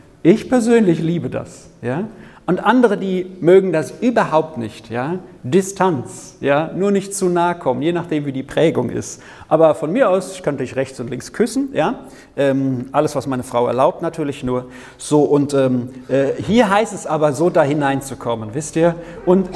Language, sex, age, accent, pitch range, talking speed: German, male, 40-59, German, 130-190 Hz, 185 wpm